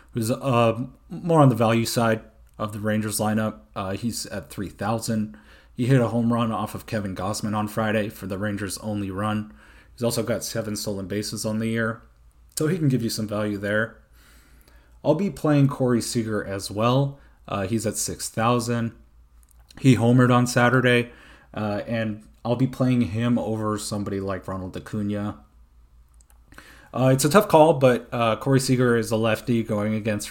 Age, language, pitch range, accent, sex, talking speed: 30-49, English, 100-120 Hz, American, male, 175 wpm